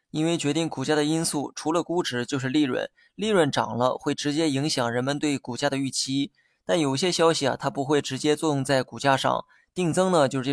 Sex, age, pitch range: male, 20-39, 135-160 Hz